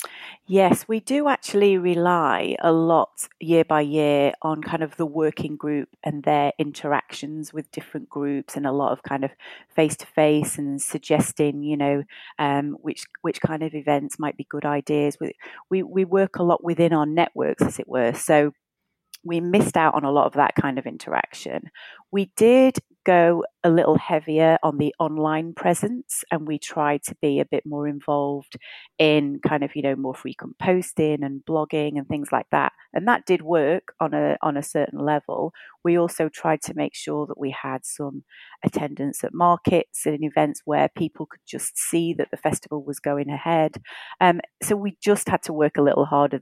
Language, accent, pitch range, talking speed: English, British, 145-170 Hz, 195 wpm